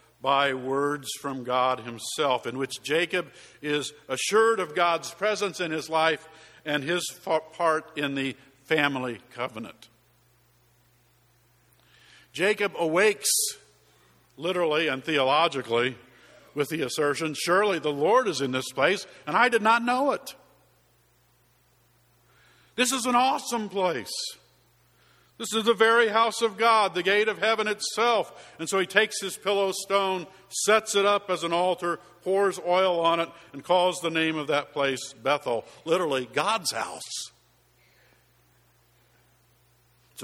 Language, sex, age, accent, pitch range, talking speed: English, male, 50-69, American, 135-200 Hz, 135 wpm